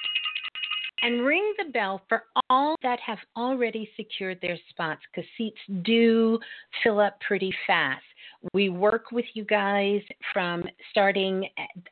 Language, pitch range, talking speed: English, 160-205 Hz, 135 wpm